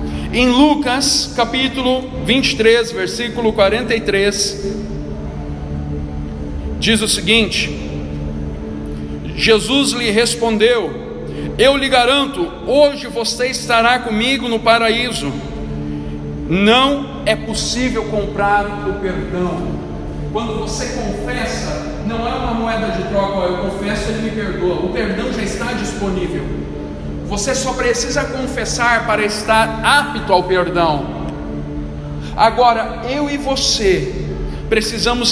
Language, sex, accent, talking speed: Portuguese, male, Brazilian, 105 wpm